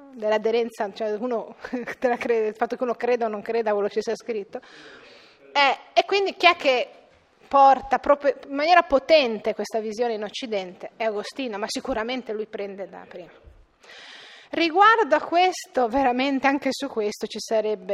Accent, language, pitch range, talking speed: native, Italian, 215-270 Hz, 170 wpm